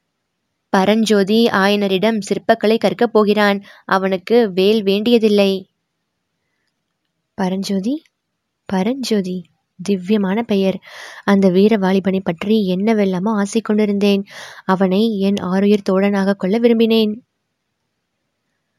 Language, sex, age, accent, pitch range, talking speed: Tamil, female, 20-39, native, 190-220 Hz, 80 wpm